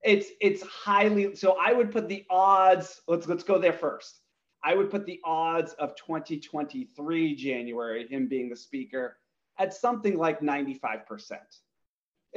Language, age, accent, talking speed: English, 30-49, American, 145 wpm